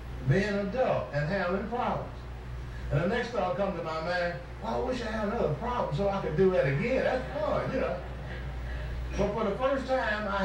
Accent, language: American, English